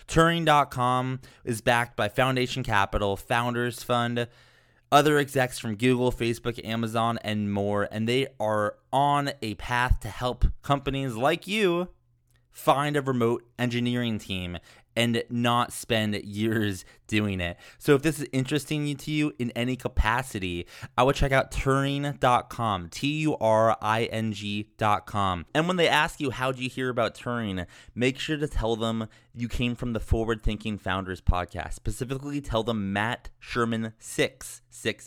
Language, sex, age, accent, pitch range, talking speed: English, male, 20-39, American, 105-130 Hz, 145 wpm